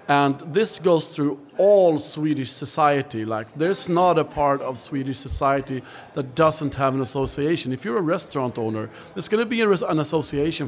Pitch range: 145-180 Hz